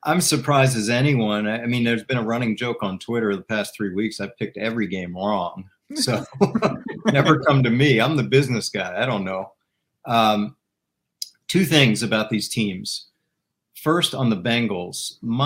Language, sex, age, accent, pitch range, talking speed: English, male, 50-69, American, 105-135 Hz, 170 wpm